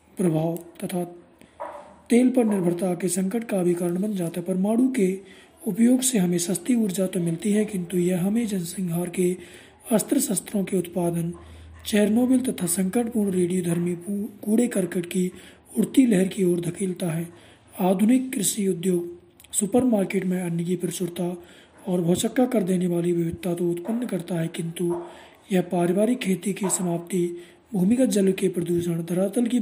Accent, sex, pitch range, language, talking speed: native, male, 175-215 Hz, Hindi, 150 wpm